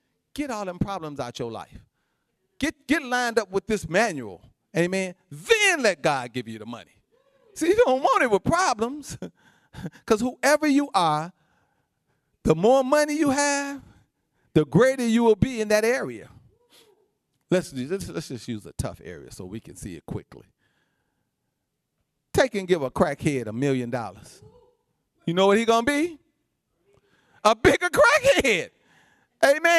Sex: male